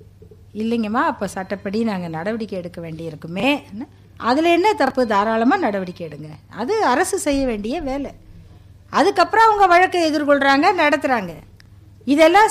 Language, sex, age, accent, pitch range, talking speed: Tamil, female, 50-69, native, 205-315 Hz, 115 wpm